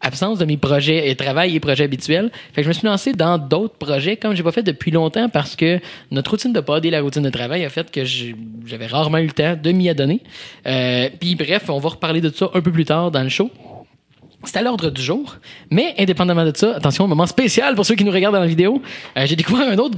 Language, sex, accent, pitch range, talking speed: French, male, Canadian, 130-170 Hz, 260 wpm